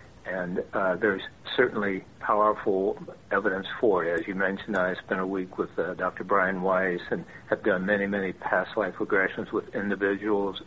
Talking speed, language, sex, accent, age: 165 wpm, English, male, American, 60-79